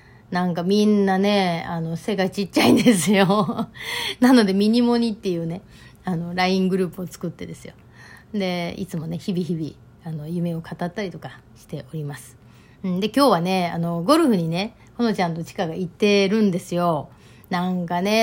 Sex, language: female, Japanese